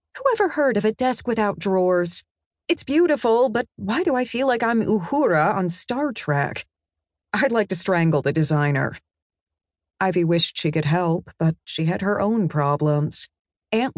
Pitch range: 145-220 Hz